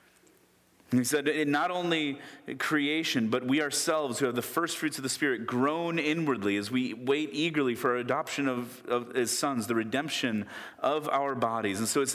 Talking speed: 190 wpm